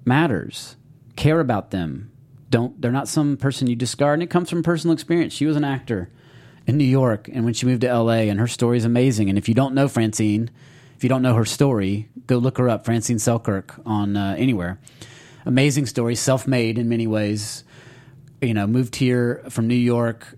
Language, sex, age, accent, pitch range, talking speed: English, male, 30-49, American, 115-135 Hz, 205 wpm